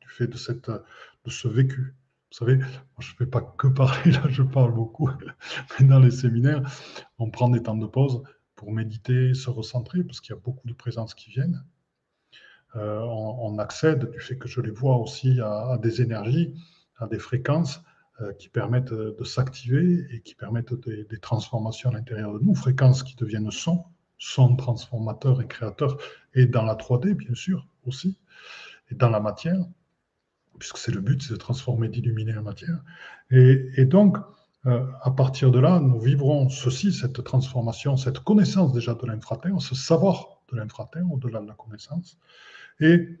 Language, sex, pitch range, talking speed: French, male, 120-150 Hz, 180 wpm